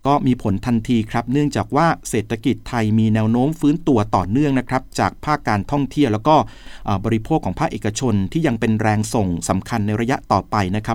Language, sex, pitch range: Thai, male, 110-145 Hz